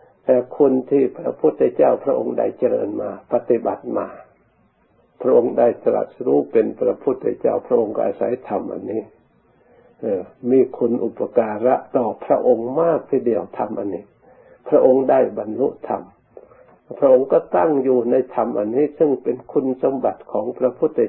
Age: 60-79